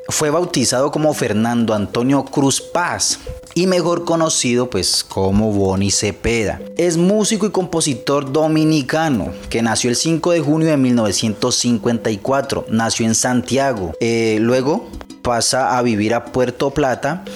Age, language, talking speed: 30-49, English, 130 wpm